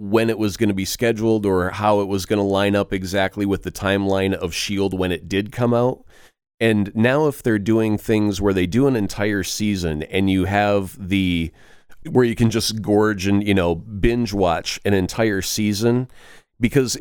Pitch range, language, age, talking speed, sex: 95-115 Hz, English, 30-49, 200 wpm, male